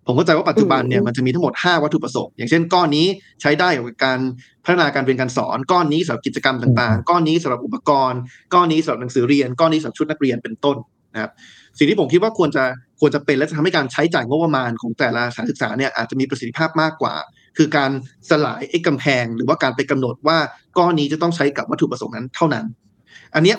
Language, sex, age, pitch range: Thai, male, 20-39, 125-160 Hz